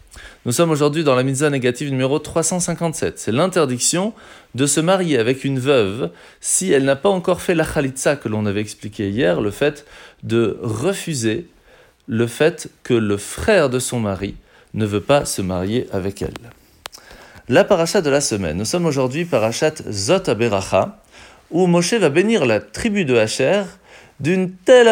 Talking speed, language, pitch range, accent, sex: 165 wpm, French, 110-175 Hz, French, male